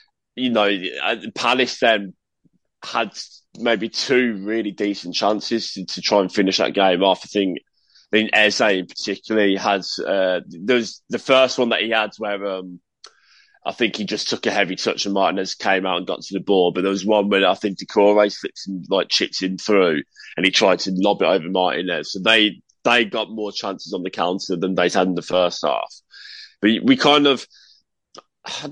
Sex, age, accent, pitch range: male, 20-39, British, 100-135 Hz